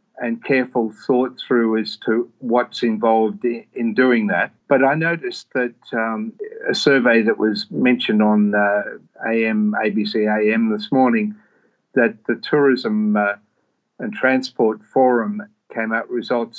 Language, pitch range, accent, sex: English, 110-135 Hz, Australian, male